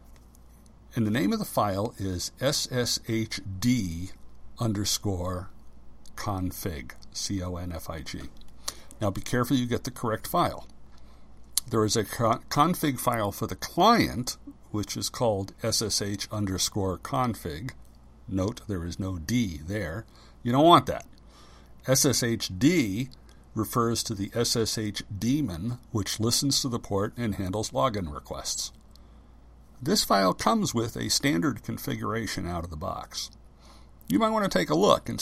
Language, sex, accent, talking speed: English, male, American, 130 wpm